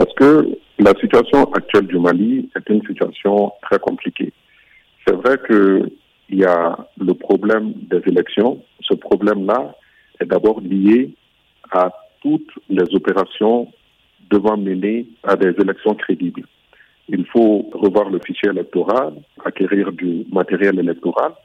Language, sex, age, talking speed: French, male, 50-69, 130 wpm